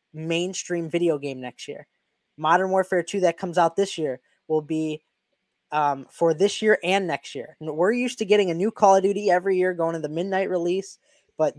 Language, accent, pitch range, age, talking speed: English, American, 150-180 Hz, 10-29, 200 wpm